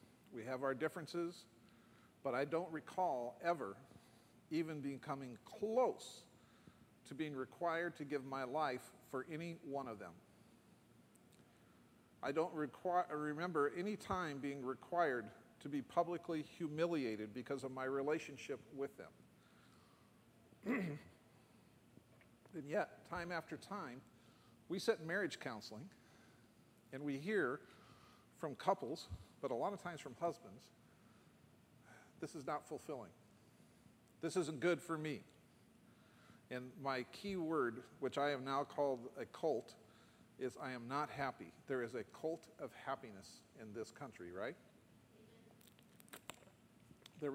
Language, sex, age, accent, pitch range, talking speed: English, male, 50-69, American, 135-175 Hz, 125 wpm